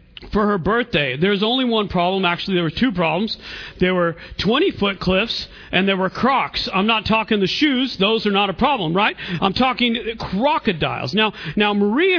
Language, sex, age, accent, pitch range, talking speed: English, male, 40-59, American, 180-225 Hz, 180 wpm